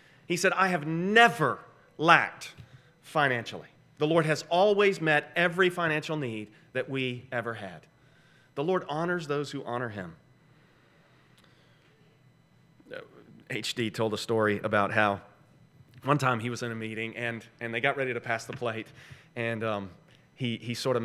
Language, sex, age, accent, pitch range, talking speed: English, male, 30-49, American, 115-150 Hz, 155 wpm